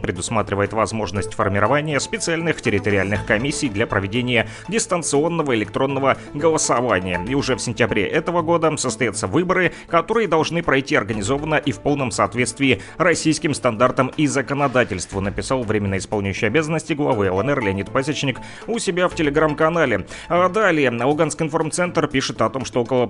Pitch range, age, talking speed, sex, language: 110-150 Hz, 30-49, 140 wpm, male, Russian